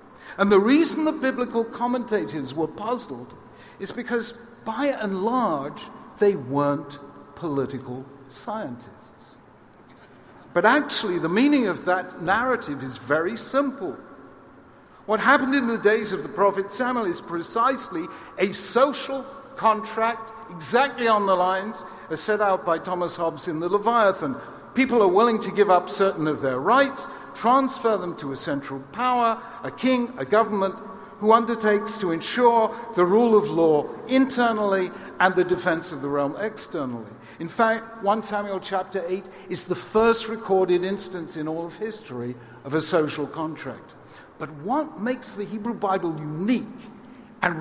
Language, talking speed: English, 145 wpm